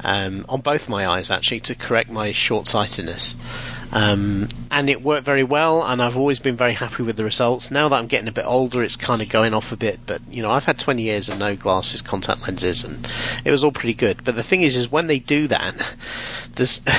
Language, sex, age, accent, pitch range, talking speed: English, male, 40-59, British, 120-165 Hz, 240 wpm